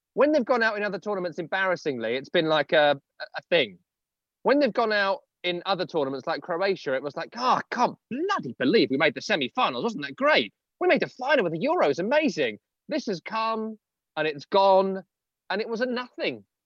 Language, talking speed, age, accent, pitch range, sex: English, 215 wpm, 30-49, British, 165-240 Hz, male